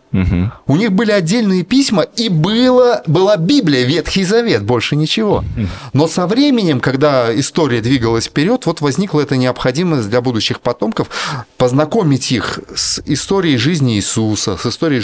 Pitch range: 125-165 Hz